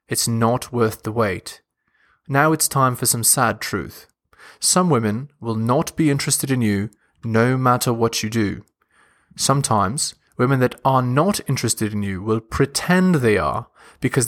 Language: English